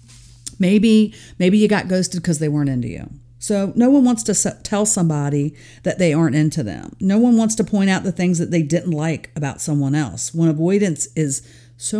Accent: American